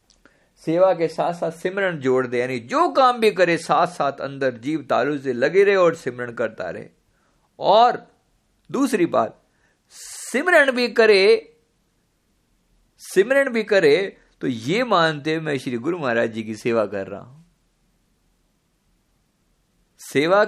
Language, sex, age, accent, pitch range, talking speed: Hindi, male, 50-69, native, 140-220 Hz, 140 wpm